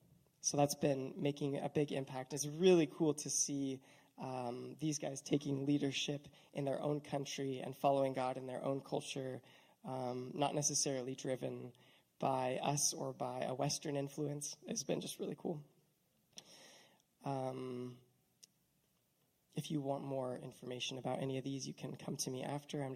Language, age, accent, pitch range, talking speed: English, 20-39, American, 130-150 Hz, 160 wpm